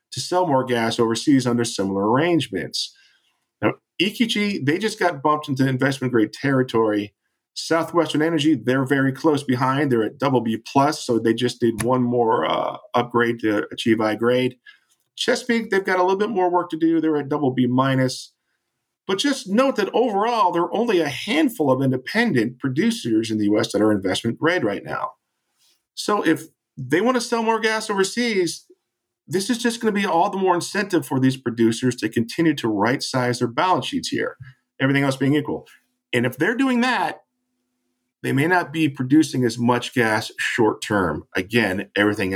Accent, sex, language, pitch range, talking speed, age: American, male, English, 115-175 Hz, 180 wpm, 50-69